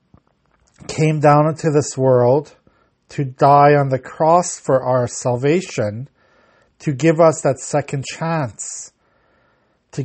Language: English